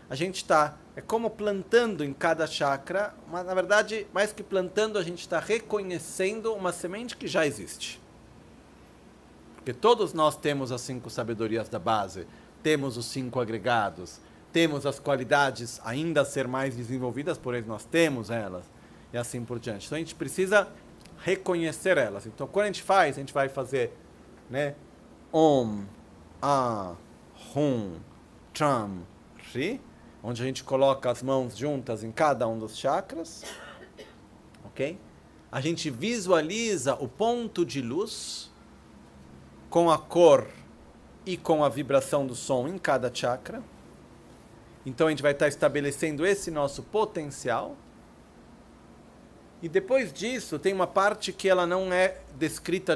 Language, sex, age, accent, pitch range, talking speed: Italian, male, 40-59, Brazilian, 125-185 Hz, 145 wpm